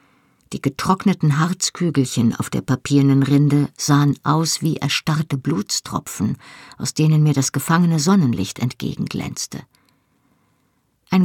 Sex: female